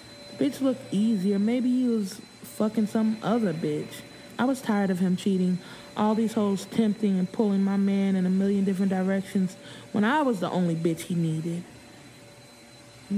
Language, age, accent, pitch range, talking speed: English, 20-39, American, 180-210 Hz, 175 wpm